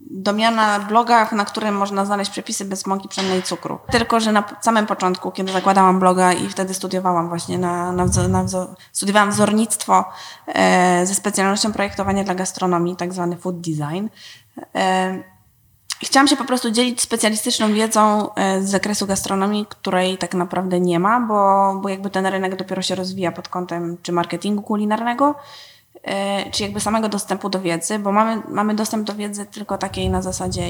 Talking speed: 170 wpm